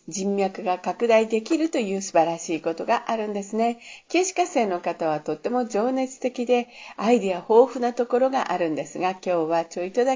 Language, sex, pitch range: Japanese, female, 190-265 Hz